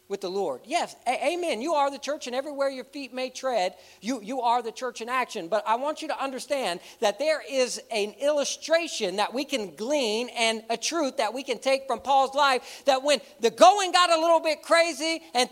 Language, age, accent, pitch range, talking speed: English, 50-69, American, 200-300 Hz, 220 wpm